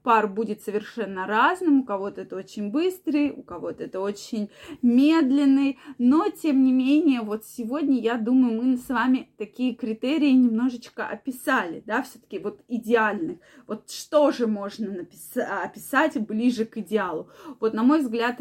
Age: 20-39